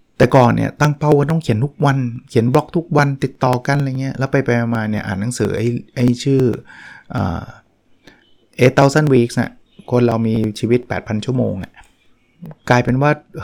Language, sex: Thai, male